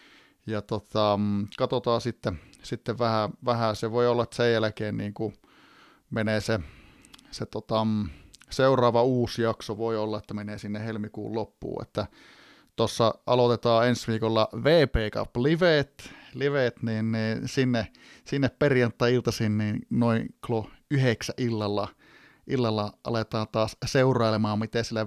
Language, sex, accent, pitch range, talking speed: Finnish, male, native, 110-130 Hz, 125 wpm